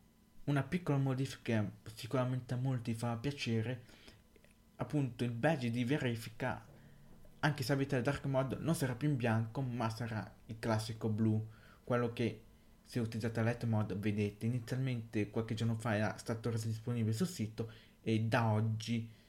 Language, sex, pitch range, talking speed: Italian, male, 110-120 Hz, 160 wpm